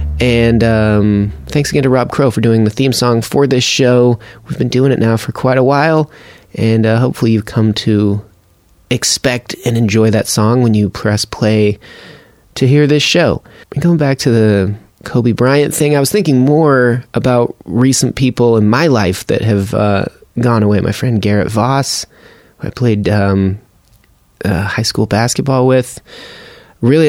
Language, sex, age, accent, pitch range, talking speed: English, male, 20-39, American, 105-130 Hz, 175 wpm